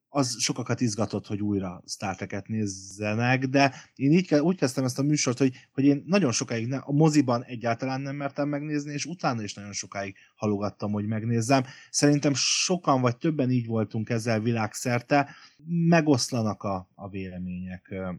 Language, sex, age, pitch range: Hungarian, male, 30-49, 95-130 Hz